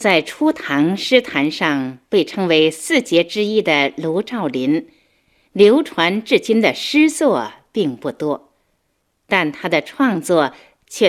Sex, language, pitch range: female, Chinese, 155-265 Hz